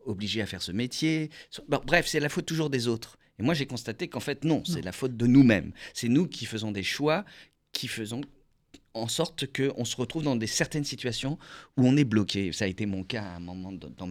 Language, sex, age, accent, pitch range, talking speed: French, male, 50-69, French, 110-165 Hz, 230 wpm